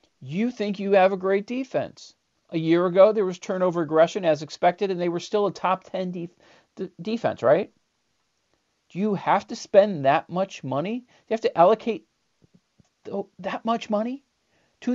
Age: 40-59